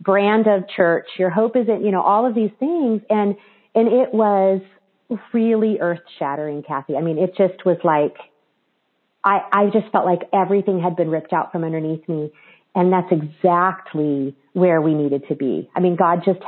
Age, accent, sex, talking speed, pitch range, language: 40-59, American, female, 185 wpm, 175-215 Hz, English